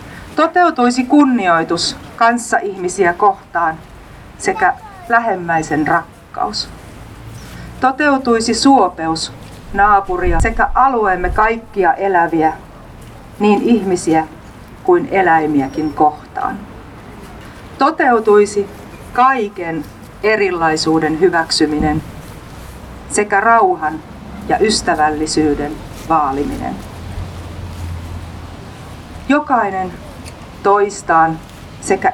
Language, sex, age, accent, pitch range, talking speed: Finnish, female, 40-59, native, 155-230 Hz, 60 wpm